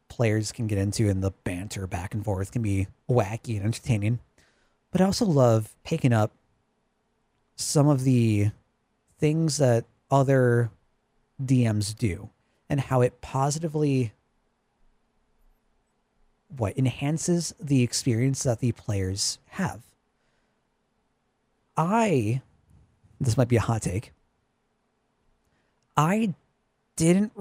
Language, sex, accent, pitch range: English, male, American, 110-145 Hz